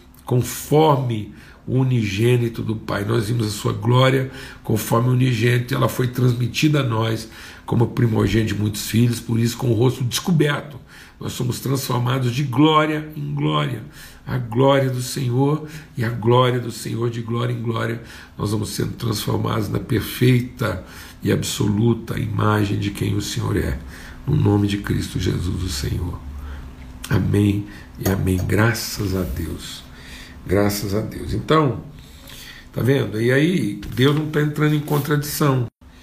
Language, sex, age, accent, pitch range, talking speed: Portuguese, male, 60-79, Brazilian, 90-130 Hz, 150 wpm